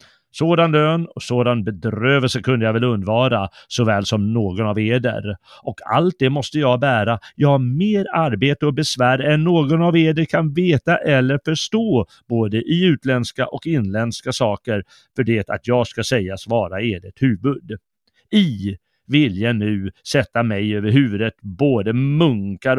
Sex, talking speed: male, 155 wpm